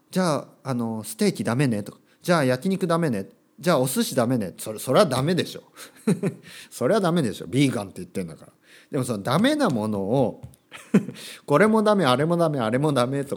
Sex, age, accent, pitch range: male, 40-59, native, 110-180 Hz